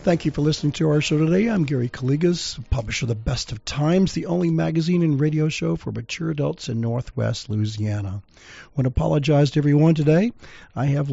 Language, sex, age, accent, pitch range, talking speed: English, male, 50-69, American, 120-150 Hz, 200 wpm